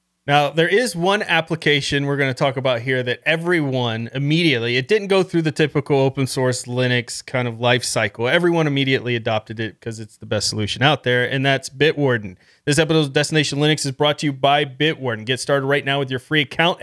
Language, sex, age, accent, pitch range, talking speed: English, male, 30-49, American, 130-160 Hz, 215 wpm